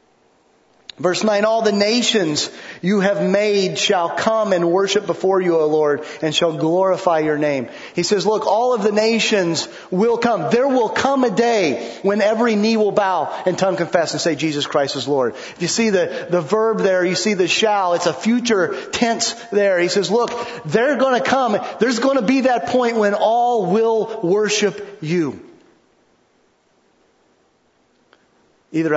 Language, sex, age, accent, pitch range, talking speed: English, male, 30-49, American, 170-225 Hz, 175 wpm